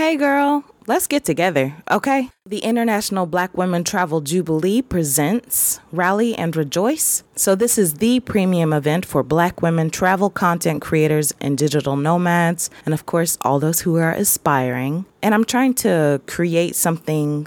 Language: English